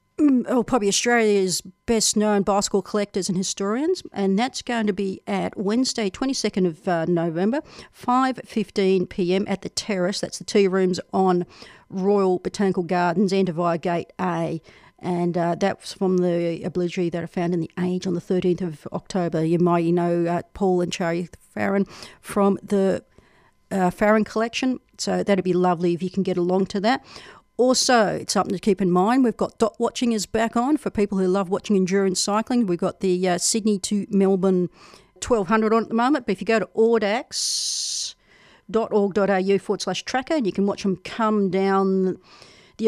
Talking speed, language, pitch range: 180 wpm, English, 180-220 Hz